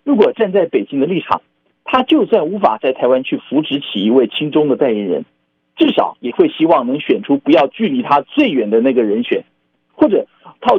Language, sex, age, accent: Chinese, male, 50-69, native